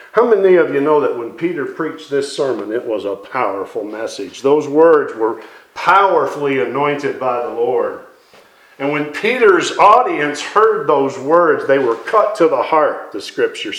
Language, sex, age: English, male, 50-69